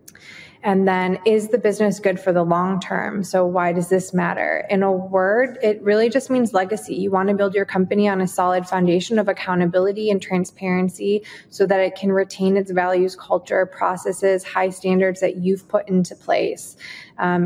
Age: 20-39